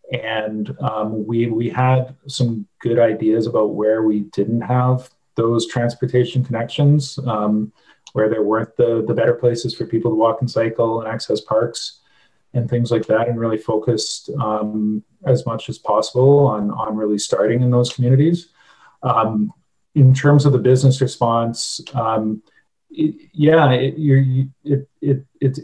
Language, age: English, 30-49